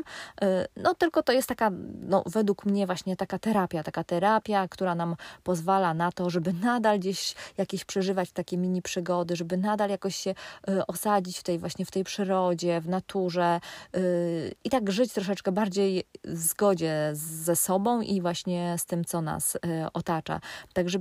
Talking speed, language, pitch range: 160 wpm, Polish, 175-200 Hz